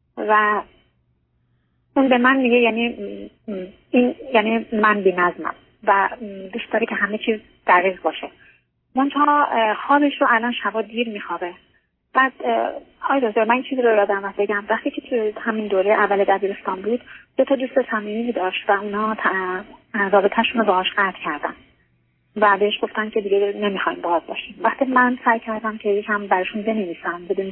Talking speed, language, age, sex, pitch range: 155 wpm, Persian, 30-49, female, 190-230 Hz